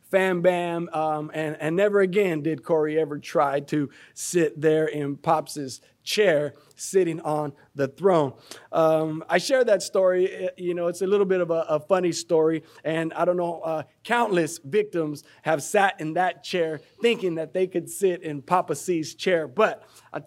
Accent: American